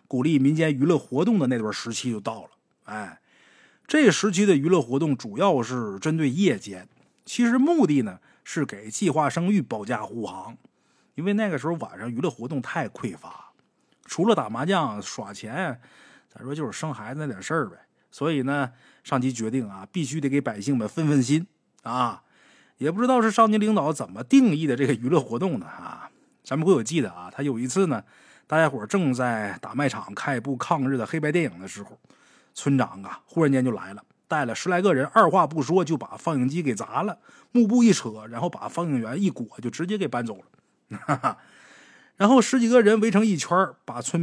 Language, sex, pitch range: Chinese, male, 130-195 Hz